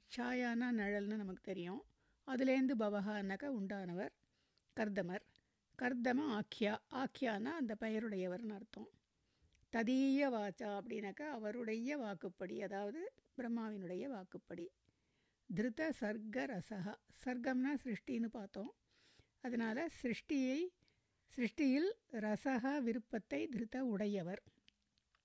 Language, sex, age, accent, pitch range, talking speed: Tamil, female, 60-79, native, 205-260 Hz, 85 wpm